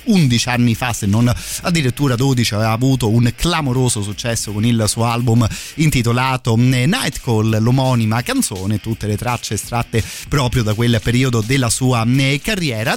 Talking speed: 150 wpm